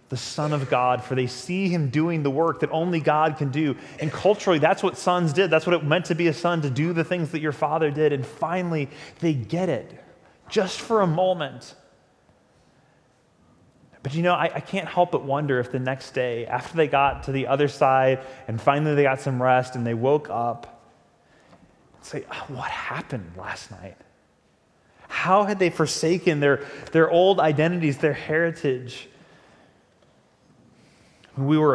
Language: English